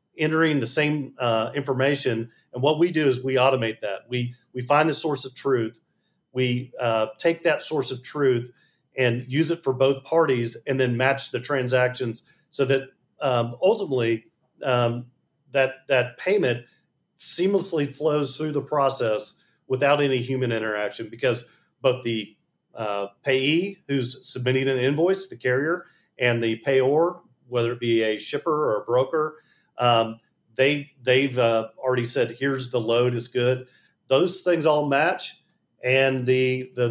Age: 40-59